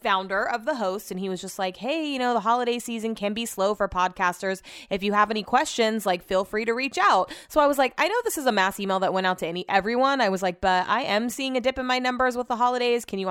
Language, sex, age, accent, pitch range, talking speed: English, female, 20-39, American, 185-240 Hz, 295 wpm